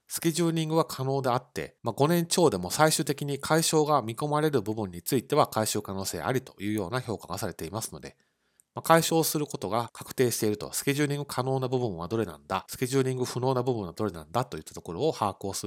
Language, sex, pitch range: Japanese, male, 100-140 Hz